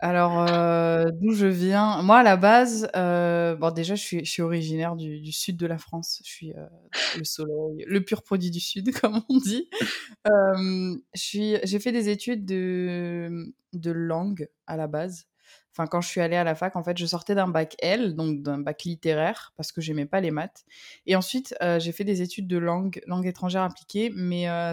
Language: French